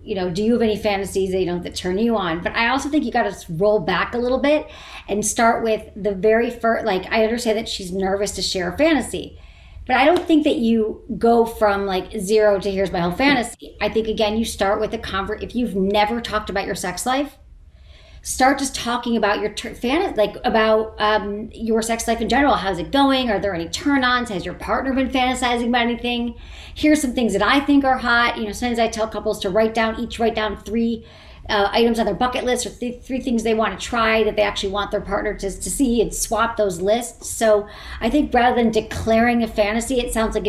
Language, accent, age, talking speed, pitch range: English, American, 40-59, 240 wpm, 195-230 Hz